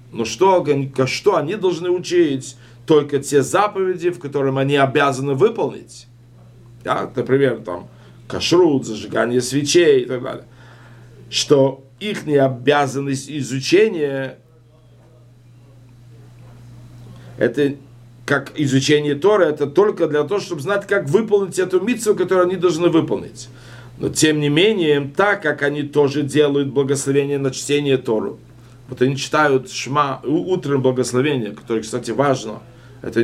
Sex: male